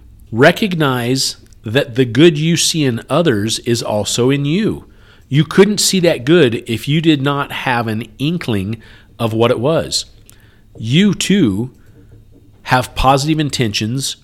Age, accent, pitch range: 40-59, American, 100-135 Hz